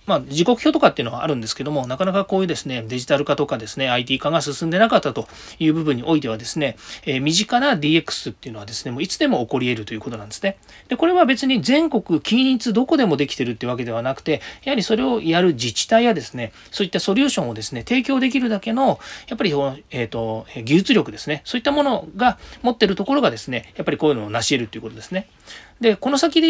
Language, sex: Japanese, male